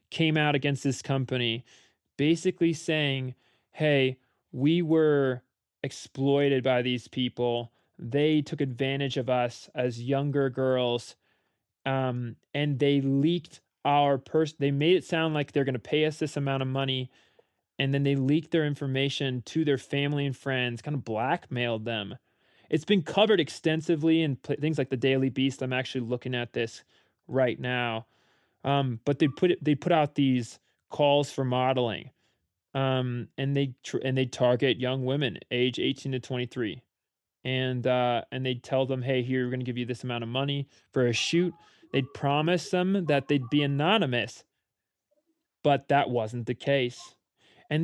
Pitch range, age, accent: 125-150 Hz, 20-39, American